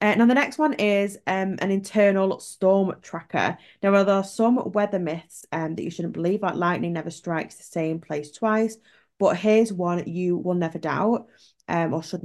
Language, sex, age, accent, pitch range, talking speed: English, female, 20-39, British, 165-200 Hz, 195 wpm